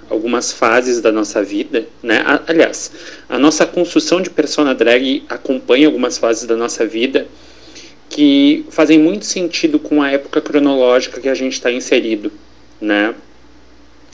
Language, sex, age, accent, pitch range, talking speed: Portuguese, male, 40-59, Brazilian, 125-200 Hz, 140 wpm